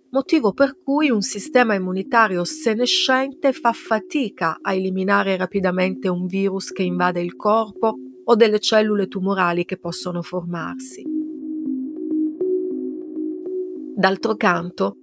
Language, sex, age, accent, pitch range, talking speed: Italian, female, 40-59, native, 180-255 Hz, 110 wpm